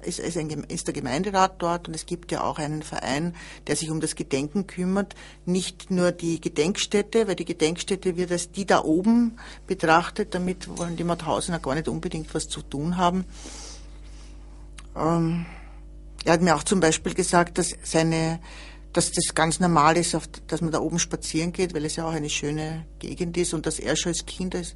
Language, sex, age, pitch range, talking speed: German, female, 50-69, 160-190 Hz, 190 wpm